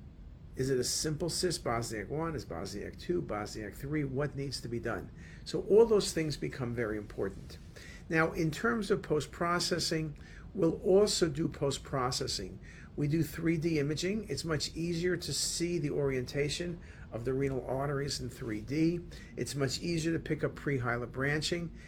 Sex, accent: male, American